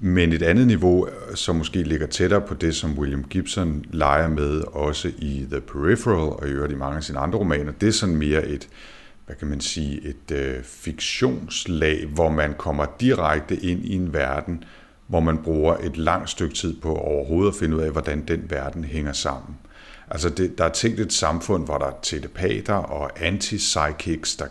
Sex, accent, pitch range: male, native, 75-90 Hz